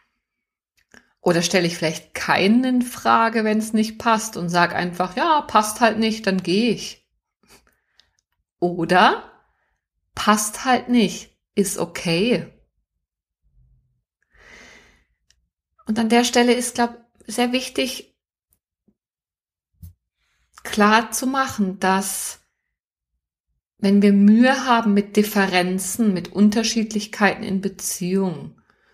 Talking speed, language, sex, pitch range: 100 wpm, German, female, 185-220 Hz